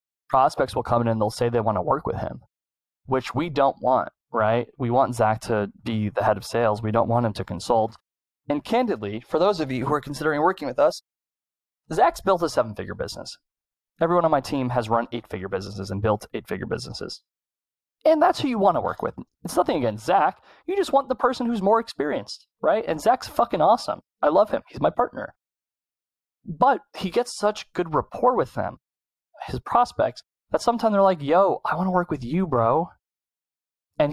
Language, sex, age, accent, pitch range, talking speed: English, male, 20-39, American, 115-155 Hz, 205 wpm